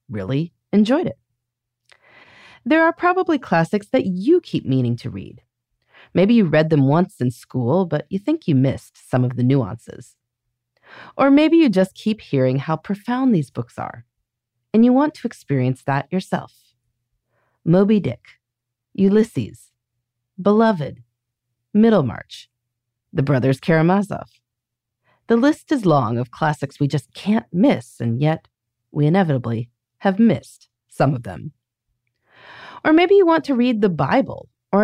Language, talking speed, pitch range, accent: English, 145 wpm, 120-190 Hz, American